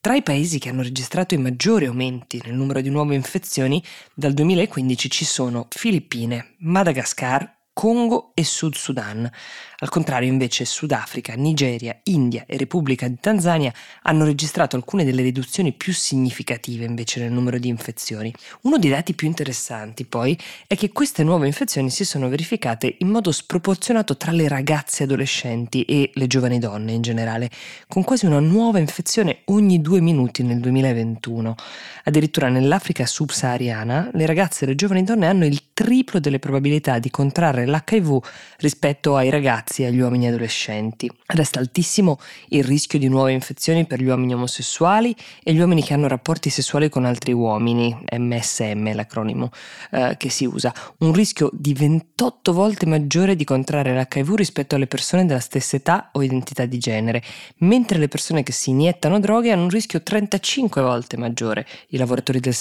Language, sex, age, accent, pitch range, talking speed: Italian, female, 20-39, native, 125-170 Hz, 160 wpm